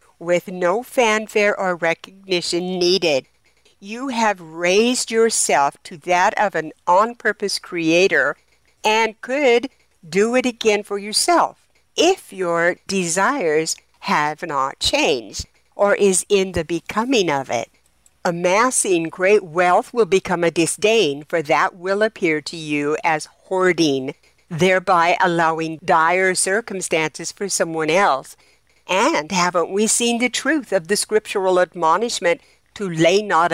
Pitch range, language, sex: 160-210 Hz, English, female